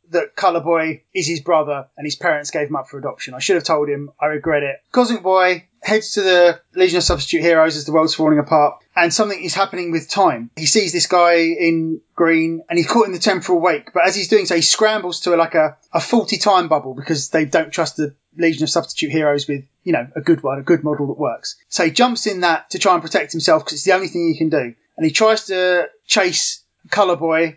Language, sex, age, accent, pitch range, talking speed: English, male, 20-39, British, 160-195 Hz, 250 wpm